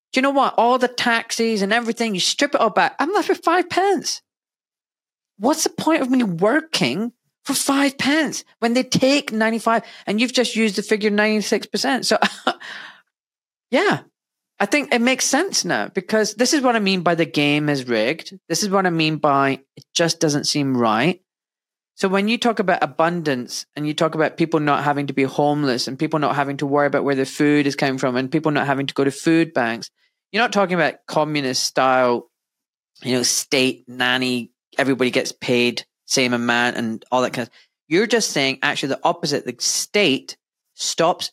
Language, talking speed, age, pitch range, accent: English, 195 wpm, 30-49, 135-220 Hz, British